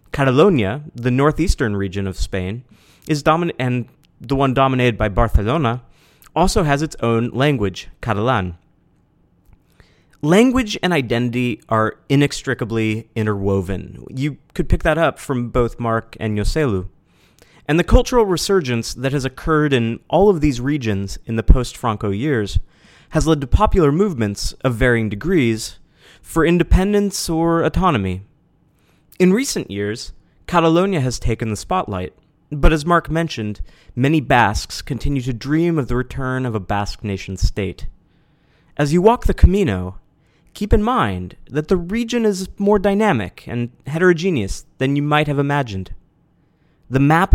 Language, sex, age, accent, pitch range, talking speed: English, male, 30-49, American, 105-160 Hz, 140 wpm